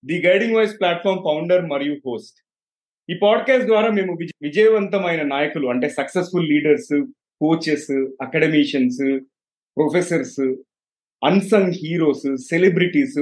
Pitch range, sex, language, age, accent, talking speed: 145-195 Hz, male, Telugu, 30-49, native, 100 wpm